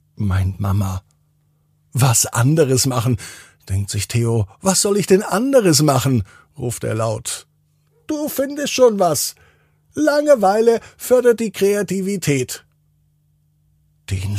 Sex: male